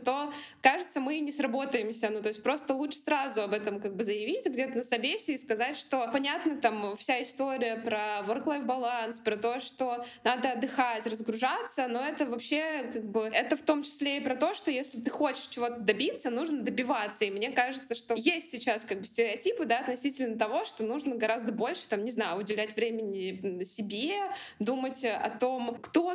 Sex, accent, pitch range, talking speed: female, native, 230-290 Hz, 185 wpm